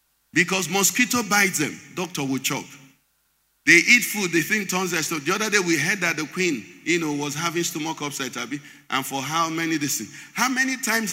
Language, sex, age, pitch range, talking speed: English, male, 50-69, 170-250 Hz, 205 wpm